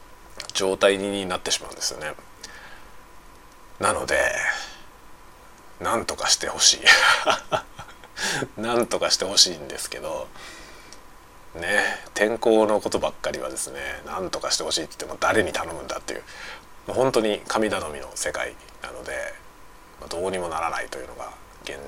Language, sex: Japanese, male